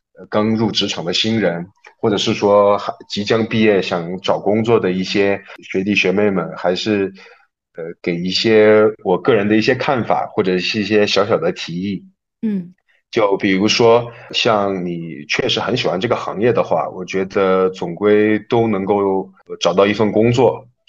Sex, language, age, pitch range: male, Chinese, 20-39, 95-115 Hz